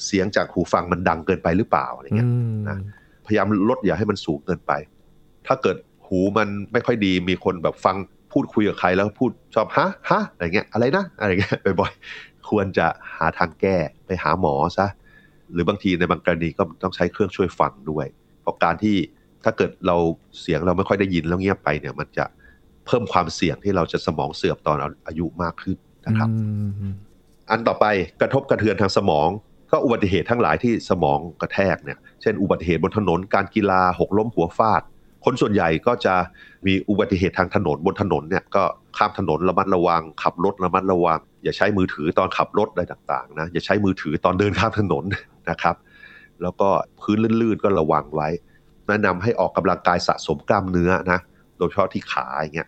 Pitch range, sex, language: 85-100 Hz, male, Thai